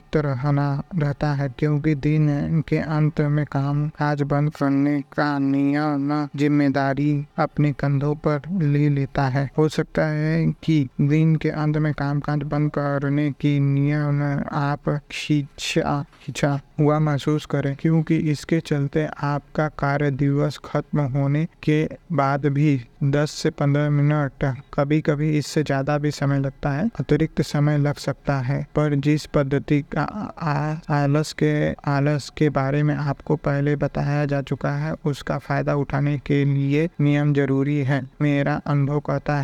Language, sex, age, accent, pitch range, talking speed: Hindi, male, 20-39, native, 140-150 Hz, 150 wpm